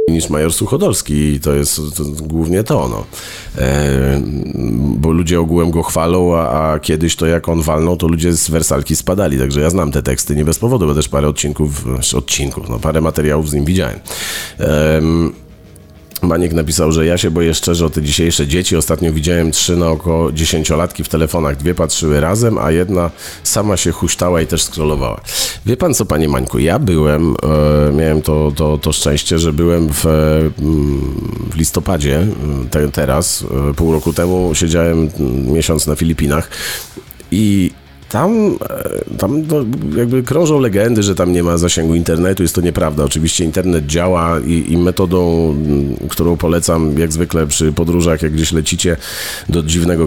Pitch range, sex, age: 75-90 Hz, male, 40-59